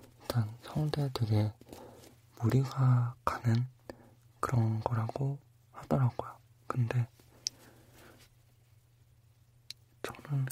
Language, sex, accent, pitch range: Korean, male, native, 115-125 Hz